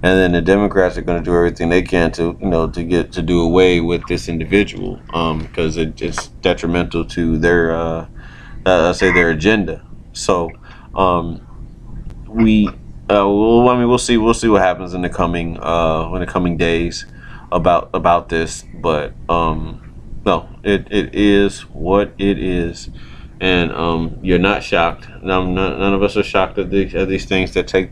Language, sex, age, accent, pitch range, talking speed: English, male, 30-49, American, 80-95 Hz, 185 wpm